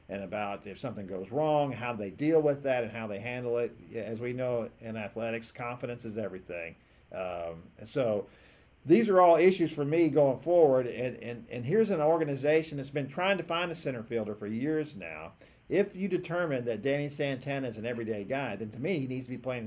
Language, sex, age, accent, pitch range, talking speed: English, male, 50-69, American, 115-150 Hz, 215 wpm